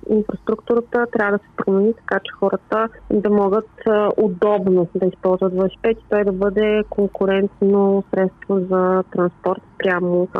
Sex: female